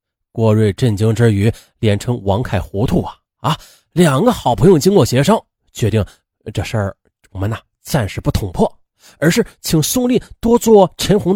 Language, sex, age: Chinese, male, 30-49